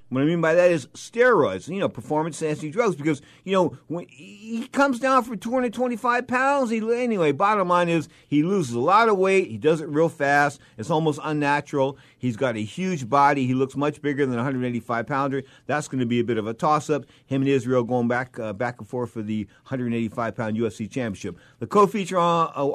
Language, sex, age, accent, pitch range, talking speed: English, male, 50-69, American, 125-165 Hz, 205 wpm